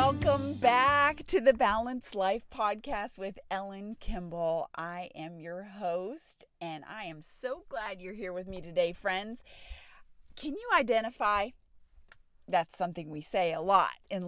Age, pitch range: 30-49, 180-220 Hz